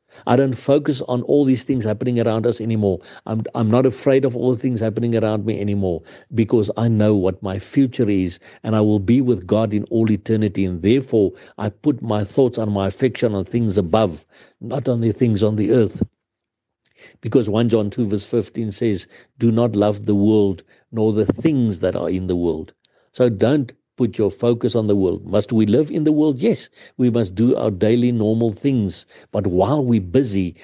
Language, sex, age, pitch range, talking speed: English, male, 60-79, 105-125 Hz, 200 wpm